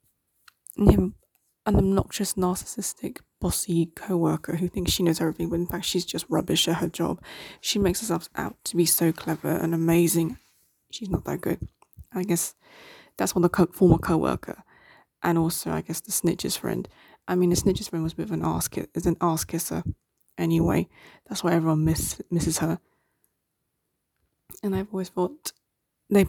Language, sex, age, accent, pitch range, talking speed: English, female, 20-39, British, 165-180 Hz, 175 wpm